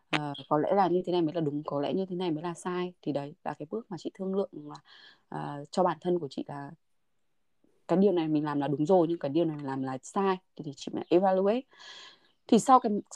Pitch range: 155-210 Hz